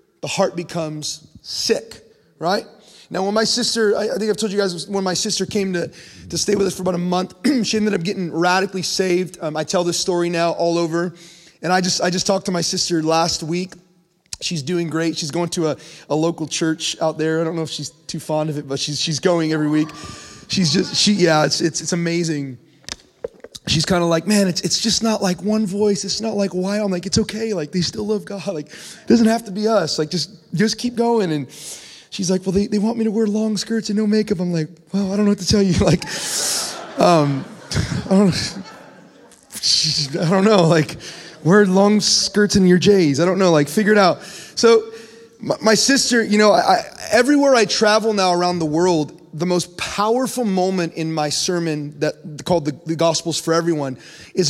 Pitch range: 165-205 Hz